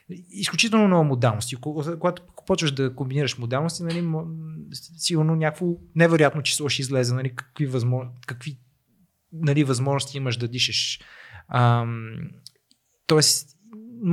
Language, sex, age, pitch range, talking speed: Bulgarian, male, 20-39, 125-165 Hz, 110 wpm